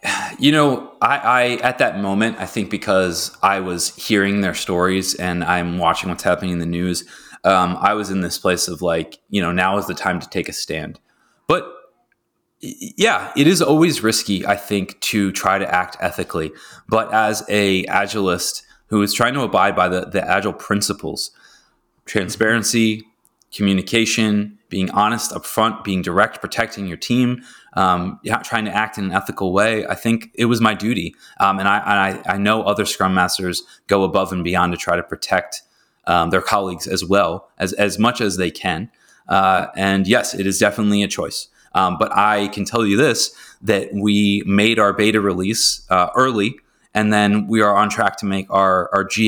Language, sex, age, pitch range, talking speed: English, male, 20-39, 95-110 Hz, 190 wpm